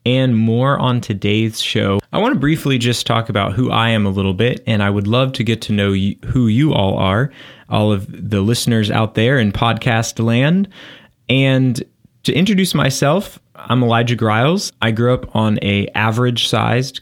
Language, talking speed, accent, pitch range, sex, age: English, 180 wpm, American, 100-125 Hz, male, 20-39